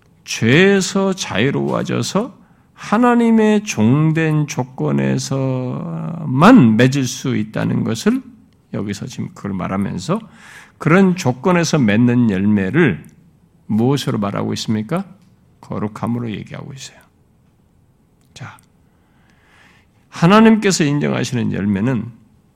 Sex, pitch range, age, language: male, 120-180 Hz, 50-69, Korean